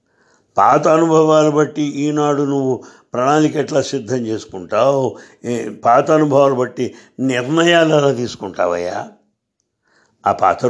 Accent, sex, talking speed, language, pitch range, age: Indian, male, 110 wpm, English, 120-165 Hz, 60-79